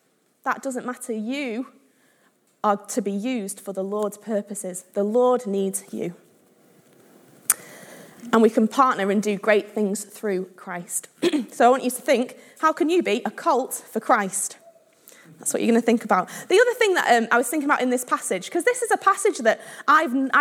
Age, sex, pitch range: 20-39, female, 215-295 Hz